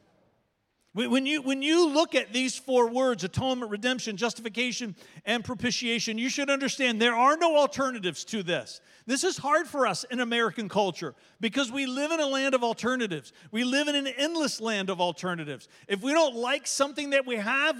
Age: 50-69